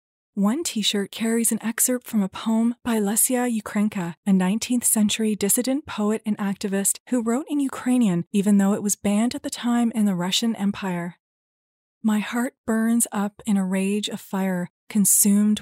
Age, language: 30-49, English